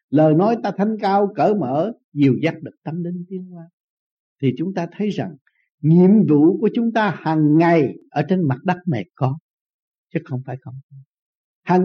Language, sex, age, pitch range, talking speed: Vietnamese, male, 60-79, 155-210 Hz, 185 wpm